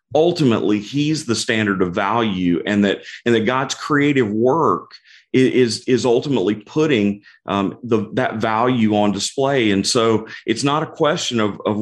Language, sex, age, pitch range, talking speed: English, male, 40-59, 105-135 Hz, 155 wpm